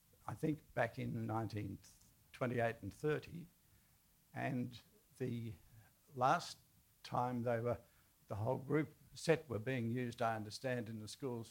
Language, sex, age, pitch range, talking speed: English, male, 60-79, 115-140 Hz, 130 wpm